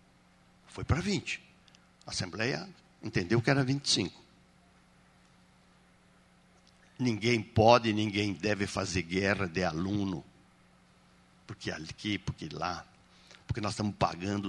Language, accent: Portuguese, Brazilian